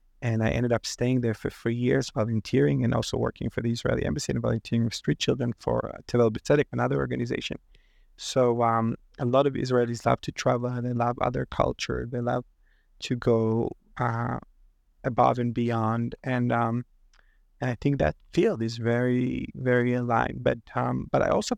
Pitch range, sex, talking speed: 110-125 Hz, male, 185 wpm